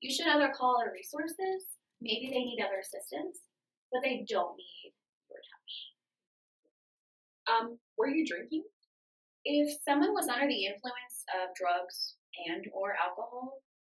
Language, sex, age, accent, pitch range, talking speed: English, female, 10-29, American, 195-275 Hz, 140 wpm